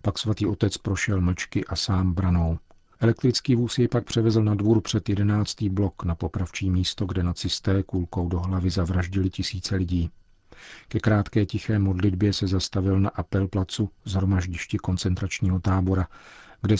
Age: 50-69